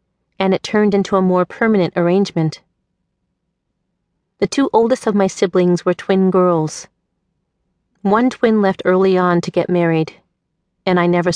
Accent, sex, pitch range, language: American, female, 175-205 Hz, English